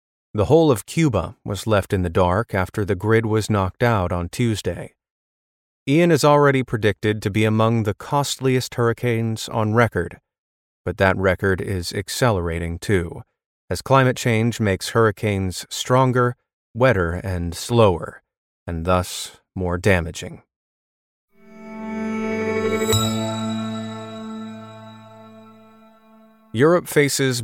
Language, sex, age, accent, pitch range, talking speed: English, male, 30-49, American, 95-130 Hz, 110 wpm